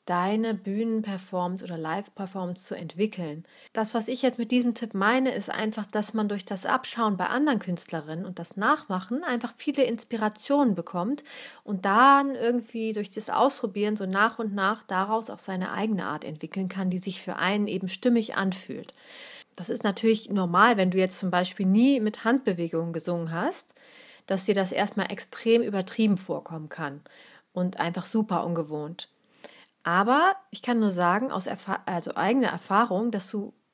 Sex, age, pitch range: female, 30-49, 185-230 Hz